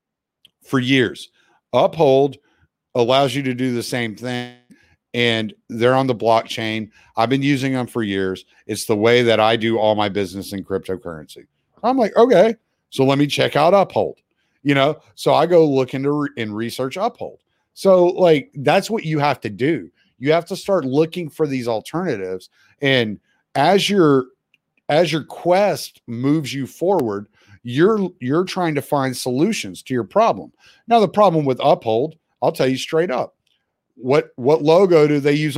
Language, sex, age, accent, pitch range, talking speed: English, male, 40-59, American, 120-175 Hz, 170 wpm